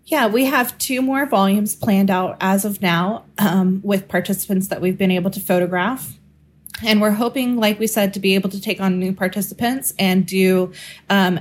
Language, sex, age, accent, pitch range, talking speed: English, female, 20-39, American, 180-205 Hz, 195 wpm